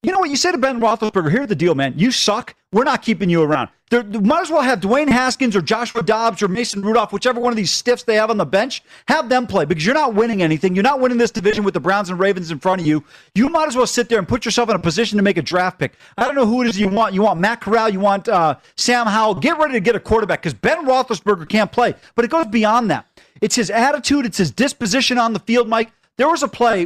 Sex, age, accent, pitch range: male, 40-59, American, 200-245 Hz